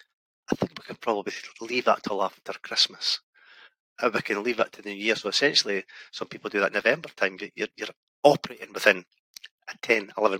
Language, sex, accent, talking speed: English, male, British, 195 wpm